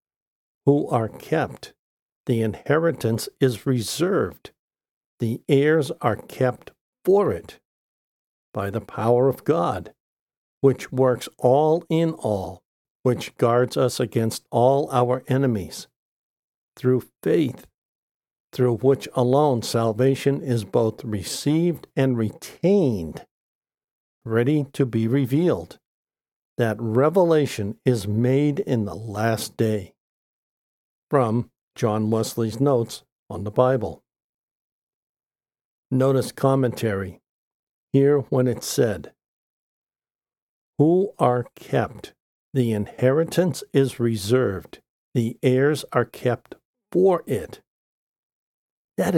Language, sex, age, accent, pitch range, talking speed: English, male, 60-79, American, 115-140 Hz, 100 wpm